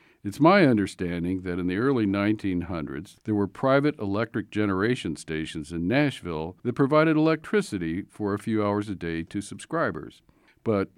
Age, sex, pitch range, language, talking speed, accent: 50-69, male, 90-125 Hz, English, 155 wpm, American